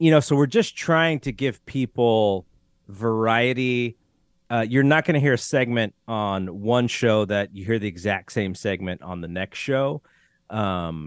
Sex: male